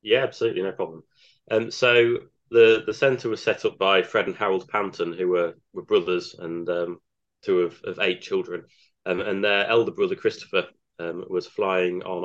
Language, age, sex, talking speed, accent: English, 20-39, male, 185 wpm, British